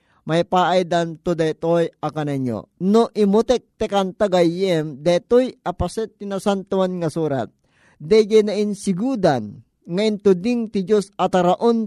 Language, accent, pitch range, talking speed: Filipino, native, 170-210 Hz, 110 wpm